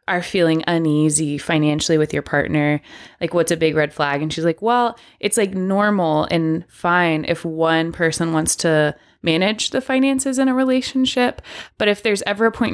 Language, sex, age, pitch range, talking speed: English, female, 20-39, 150-185 Hz, 185 wpm